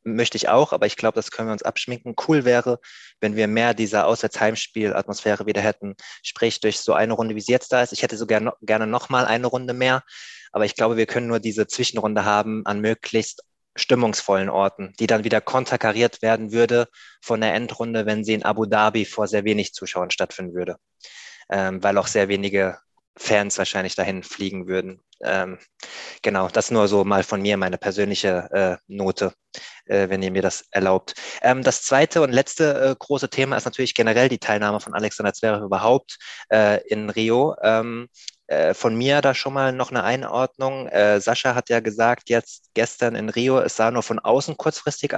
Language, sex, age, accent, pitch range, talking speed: German, male, 20-39, German, 100-125 Hz, 185 wpm